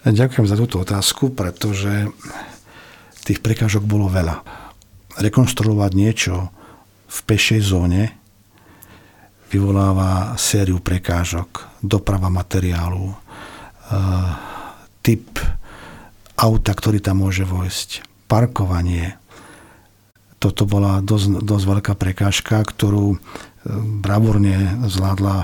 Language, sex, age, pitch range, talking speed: Slovak, male, 50-69, 95-110 Hz, 85 wpm